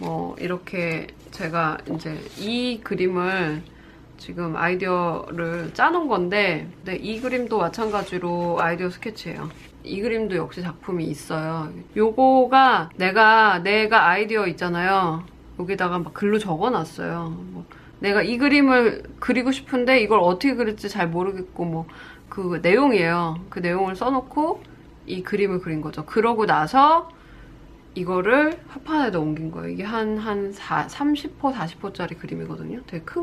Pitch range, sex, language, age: 170-230 Hz, female, Korean, 20-39